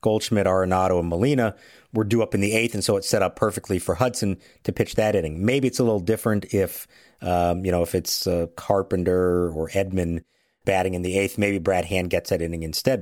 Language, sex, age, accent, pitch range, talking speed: English, male, 50-69, American, 95-135 Hz, 220 wpm